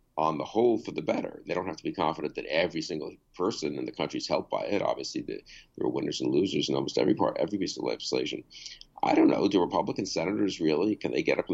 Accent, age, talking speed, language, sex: American, 50-69, 255 wpm, English, male